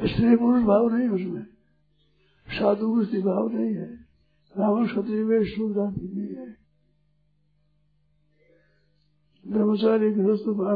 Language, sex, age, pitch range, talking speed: Hindi, male, 60-79, 150-210 Hz, 115 wpm